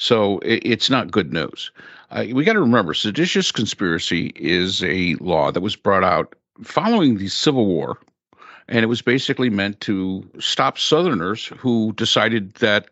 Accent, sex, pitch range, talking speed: American, male, 95-130 Hz, 155 wpm